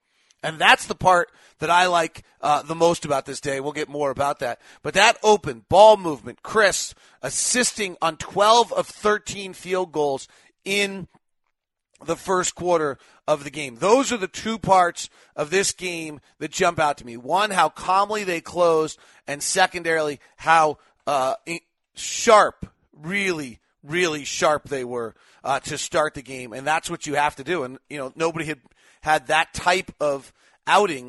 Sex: male